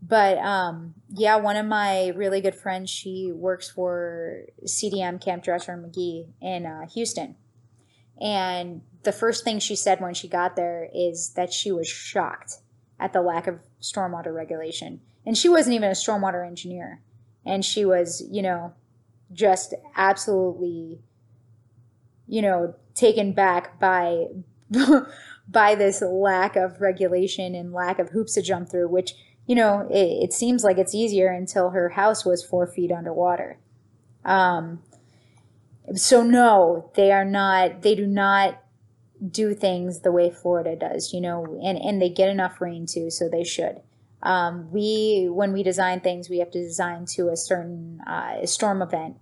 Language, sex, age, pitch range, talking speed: English, female, 20-39, 170-195 Hz, 160 wpm